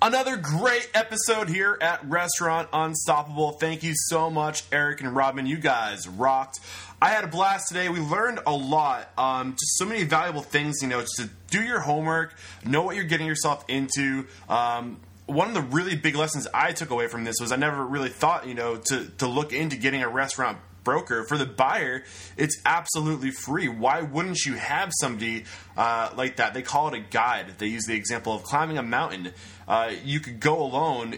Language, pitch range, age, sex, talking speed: English, 110-155 Hz, 20-39, male, 200 wpm